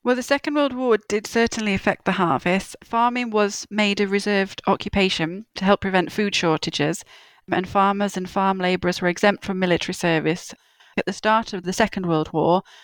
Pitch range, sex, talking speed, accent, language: 180-205 Hz, female, 180 wpm, British, English